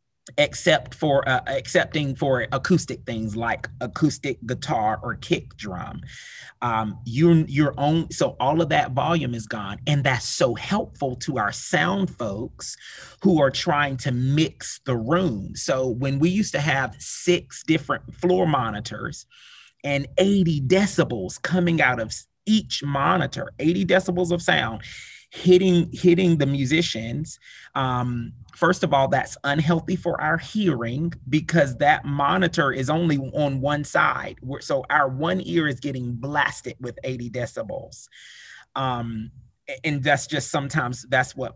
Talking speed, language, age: 145 wpm, English, 30-49